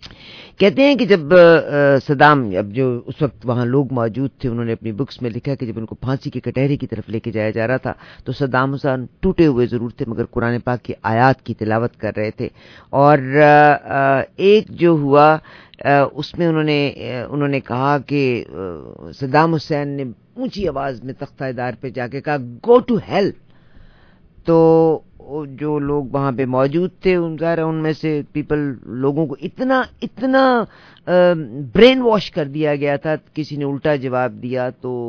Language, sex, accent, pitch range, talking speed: English, female, Indian, 125-155 Hz, 150 wpm